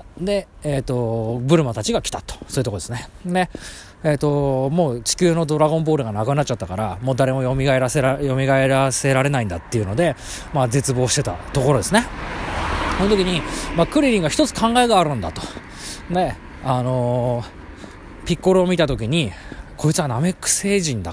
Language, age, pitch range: Japanese, 20-39, 110-165 Hz